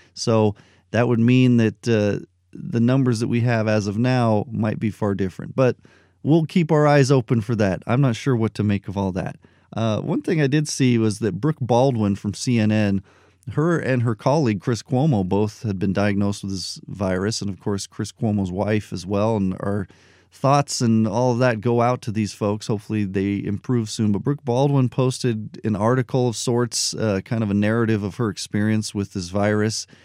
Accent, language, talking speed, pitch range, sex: American, English, 205 wpm, 100-130 Hz, male